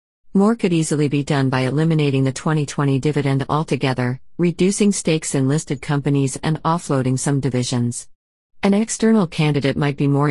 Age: 40-59